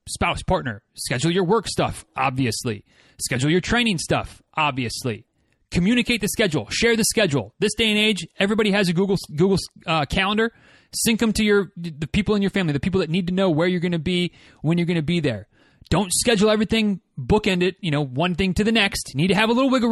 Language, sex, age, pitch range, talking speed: English, male, 30-49, 155-210 Hz, 215 wpm